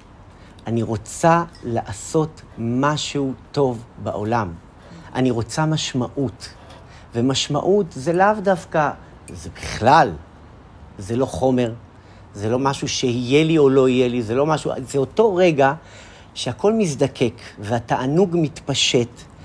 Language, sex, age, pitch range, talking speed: Hebrew, male, 40-59, 105-155 Hz, 115 wpm